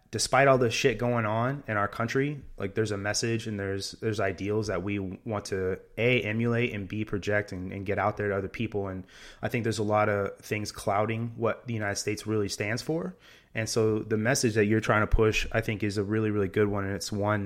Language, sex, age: English, male, 20-39